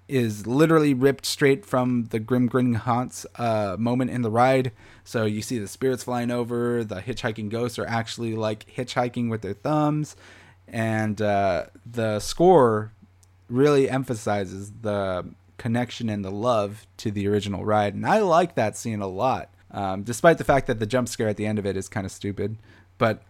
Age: 30-49